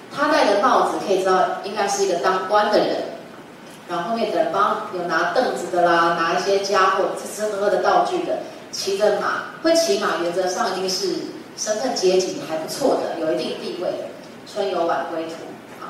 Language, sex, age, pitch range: Chinese, female, 30-49, 180-285 Hz